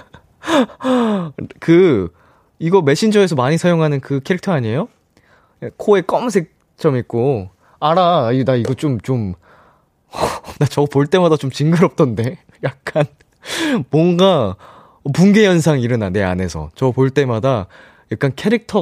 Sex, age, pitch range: male, 20-39, 115-170 Hz